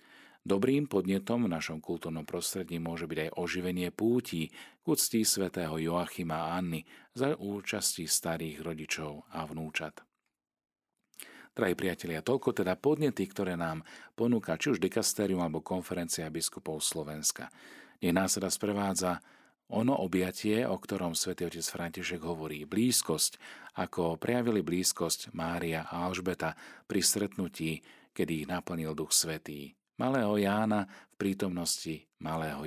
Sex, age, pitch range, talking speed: male, 40-59, 80-95 Hz, 125 wpm